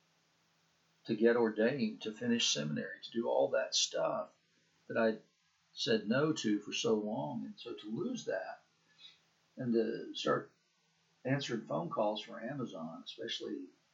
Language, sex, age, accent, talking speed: English, male, 60-79, American, 140 wpm